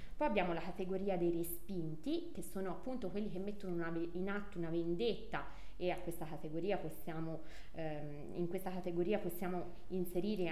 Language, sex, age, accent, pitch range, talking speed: Italian, female, 20-39, native, 170-220 Hz, 160 wpm